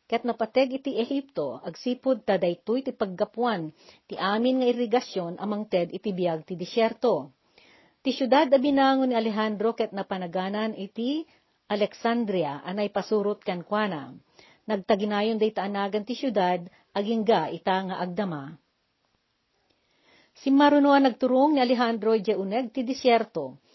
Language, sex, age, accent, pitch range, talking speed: Filipino, female, 50-69, native, 195-245 Hz, 125 wpm